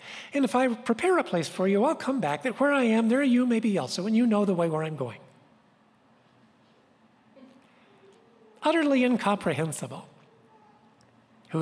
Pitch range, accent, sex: 170-255 Hz, American, male